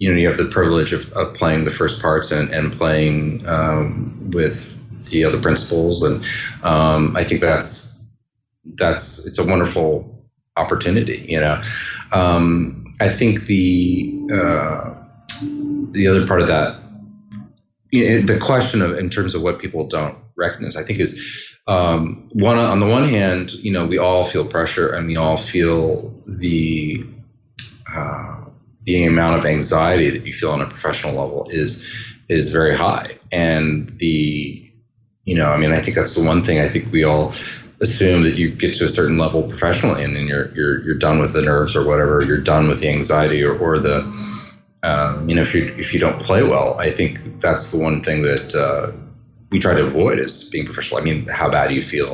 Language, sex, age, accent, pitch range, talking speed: English, male, 30-49, American, 80-110 Hz, 190 wpm